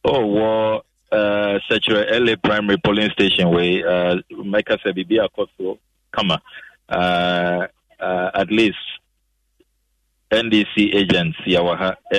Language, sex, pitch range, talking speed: English, male, 90-105 Hz, 130 wpm